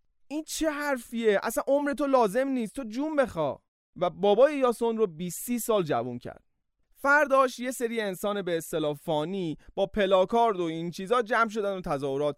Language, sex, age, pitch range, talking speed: Persian, male, 30-49, 165-245 Hz, 170 wpm